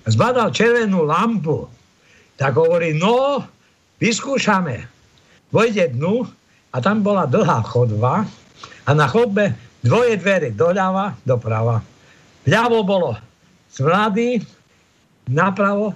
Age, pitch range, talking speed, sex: 60-79, 125-210 Hz, 100 wpm, male